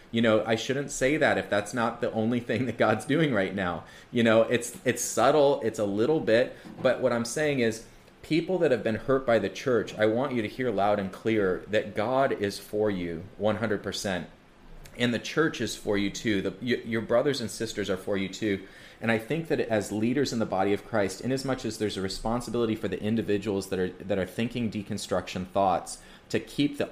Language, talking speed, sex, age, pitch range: English, 225 wpm, male, 30-49, 100-120 Hz